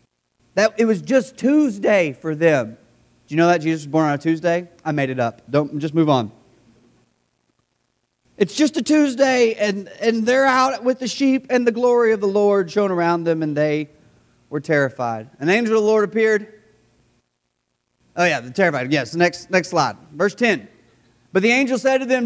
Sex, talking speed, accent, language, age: male, 190 wpm, American, English, 30-49